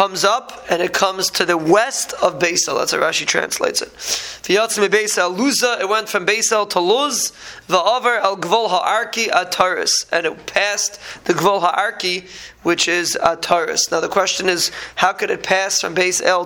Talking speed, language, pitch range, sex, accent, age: 155 wpm, English, 170-205 Hz, male, American, 20-39